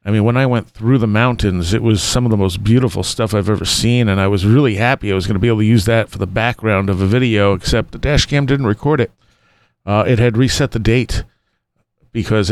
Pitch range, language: 100-115 Hz, English